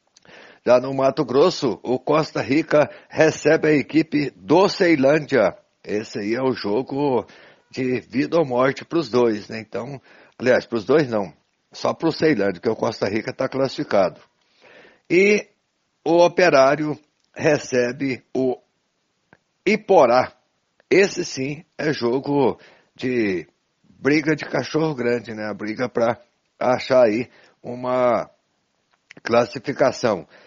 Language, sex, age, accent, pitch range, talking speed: Portuguese, male, 60-79, Brazilian, 120-150 Hz, 125 wpm